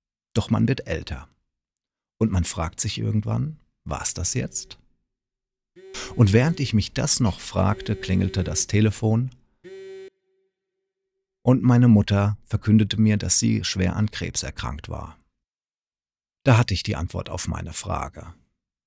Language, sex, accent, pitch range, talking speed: German, male, German, 95-120 Hz, 135 wpm